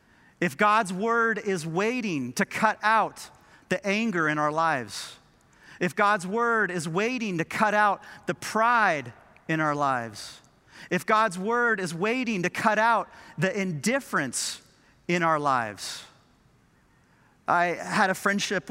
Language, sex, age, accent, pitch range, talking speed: English, male, 40-59, American, 165-210 Hz, 140 wpm